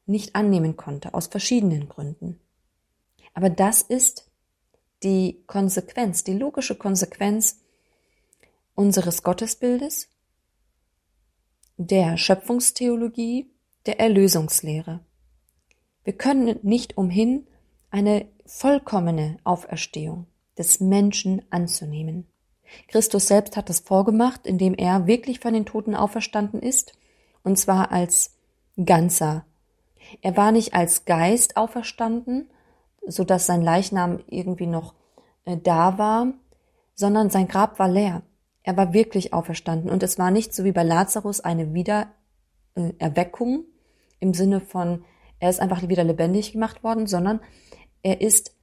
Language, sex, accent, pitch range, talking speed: German, female, German, 175-215 Hz, 115 wpm